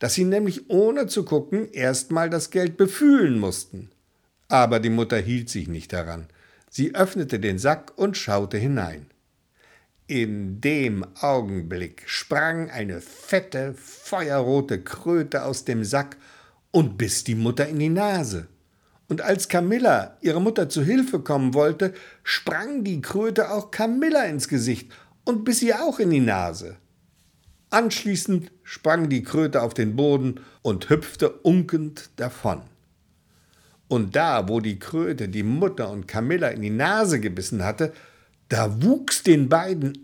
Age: 60-79